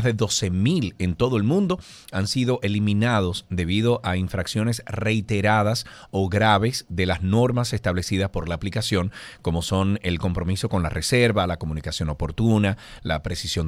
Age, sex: 40-59, male